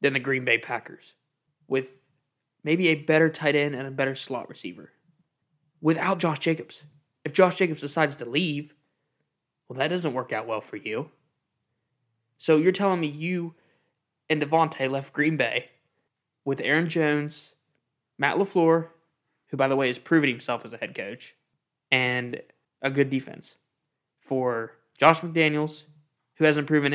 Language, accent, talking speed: English, American, 155 wpm